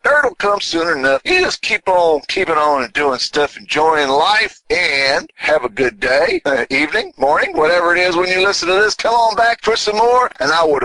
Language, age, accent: English, 50-69, American